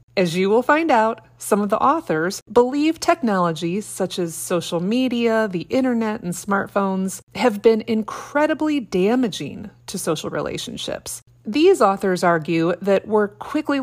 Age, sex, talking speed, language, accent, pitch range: 30-49, female, 140 wpm, English, American, 170-245 Hz